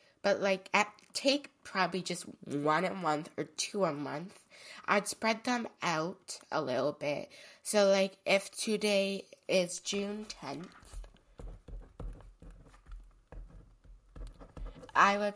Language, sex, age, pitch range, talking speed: English, female, 20-39, 175-215 Hz, 115 wpm